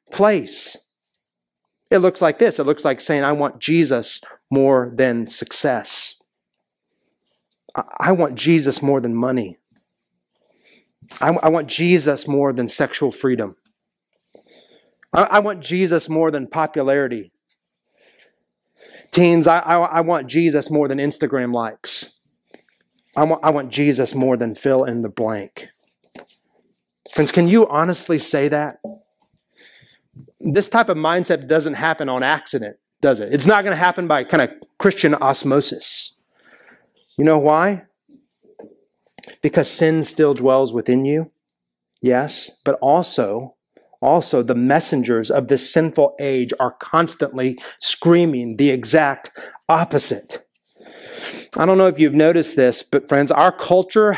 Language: English